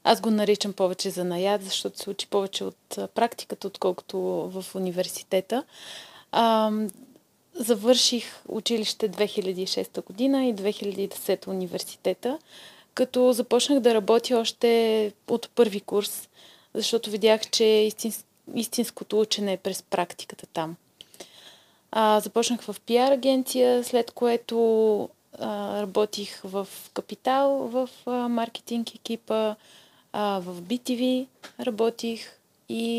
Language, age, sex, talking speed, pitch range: Bulgarian, 30-49, female, 100 wpm, 205-240 Hz